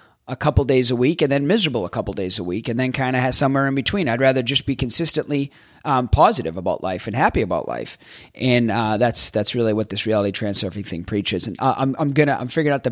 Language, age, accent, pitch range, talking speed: English, 30-49, American, 115-140 Hz, 255 wpm